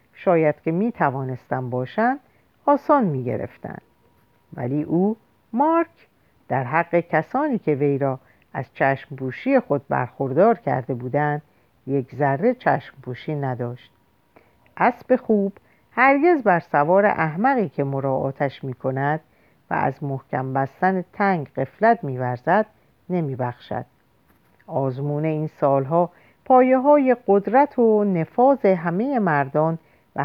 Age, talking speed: 50-69, 105 wpm